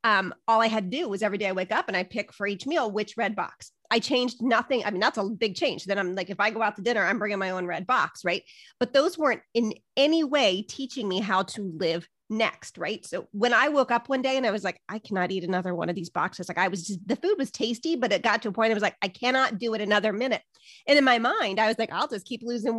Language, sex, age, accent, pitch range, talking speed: English, female, 30-49, American, 200-250 Hz, 295 wpm